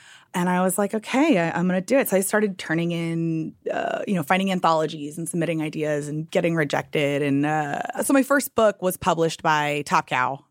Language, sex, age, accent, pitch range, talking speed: English, female, 20-39, American, 145-185 Hz, 215 wpm